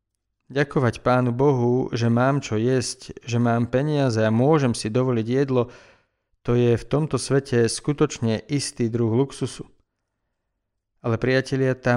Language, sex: Slovak, male